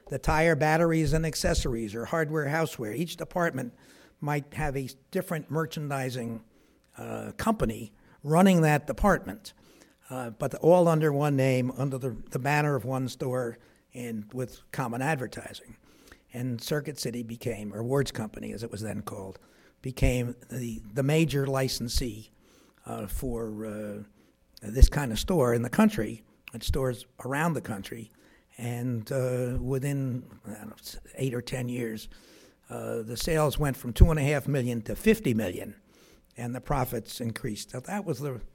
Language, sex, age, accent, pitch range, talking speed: English, male, 60-79, American, 115-155 Hz, 155 wpm